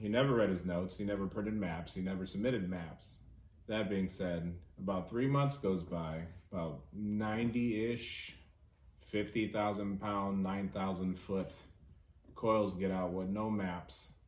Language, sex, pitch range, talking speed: English, male, 85-105 Hz, 145 wpm